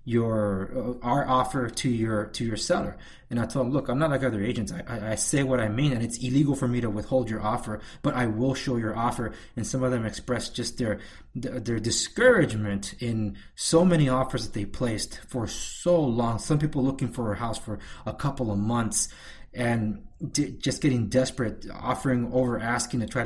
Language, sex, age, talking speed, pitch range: English, male, 20-39, 205 wpm, 110-130 Hz